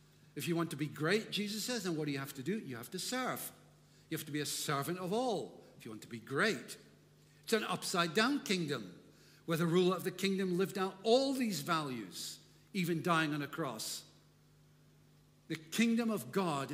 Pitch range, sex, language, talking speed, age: 150-195 Hz, male, English, 205 wpm, 60-79